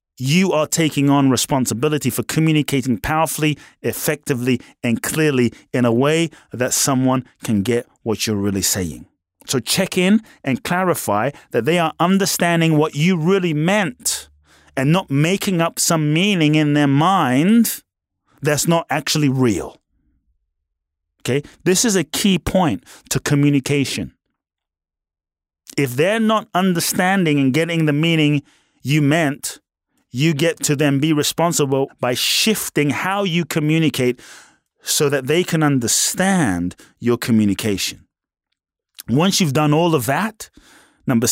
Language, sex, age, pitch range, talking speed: English, male, 30-49, 115-165 Hz, 130 wpm